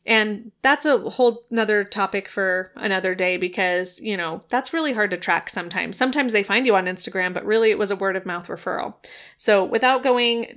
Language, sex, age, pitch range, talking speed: English, female, 20-39, 190-230 Hz, 205 wpm